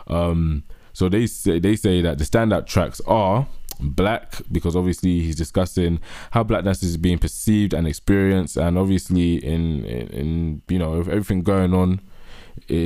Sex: male